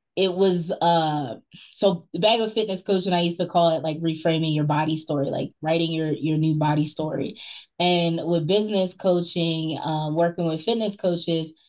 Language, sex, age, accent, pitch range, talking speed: English, female, 20-39, American, 160-195 Hz, 185 wpm